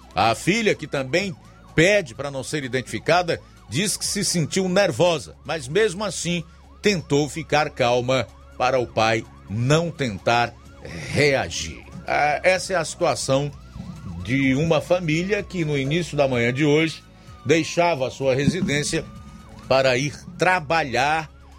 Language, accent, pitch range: Portuguese, Brazilian, 110-155 Hz